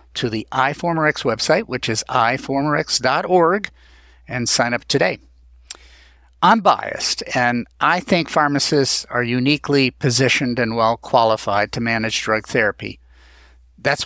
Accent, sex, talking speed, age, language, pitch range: American, male, 115 wpm, 50-69, English, 115-150 Hz